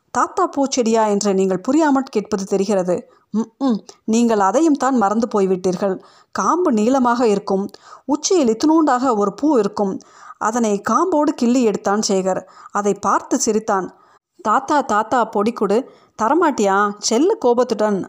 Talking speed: 105 wpm